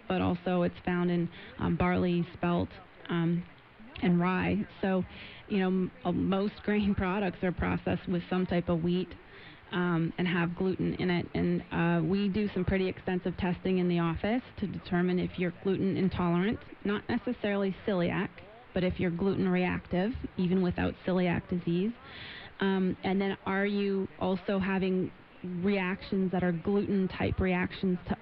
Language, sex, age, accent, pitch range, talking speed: English, female, 30-49, American, 175-195 Hz, 155 wpm